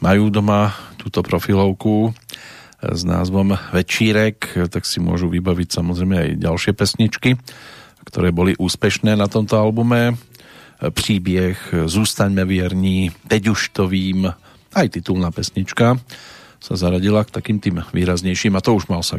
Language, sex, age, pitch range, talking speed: Slovak, male, 40-59, 90-105 Hz, 130 wpm